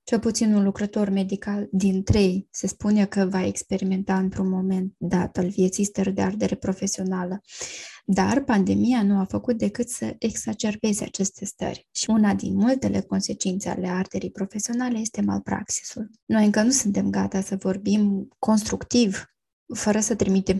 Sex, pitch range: female, 190-215 Hz